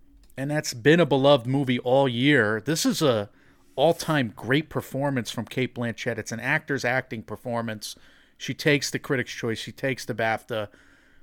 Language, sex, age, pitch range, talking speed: English, male, 40-59, 120-145 Hz, 165 wpm